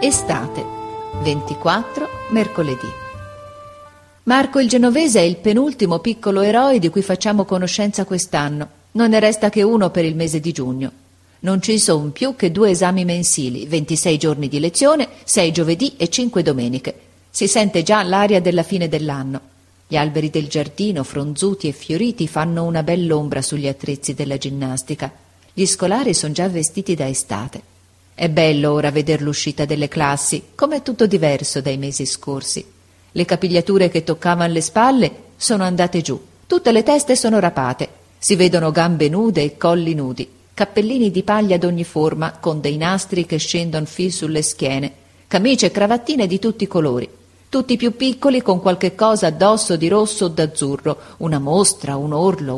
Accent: native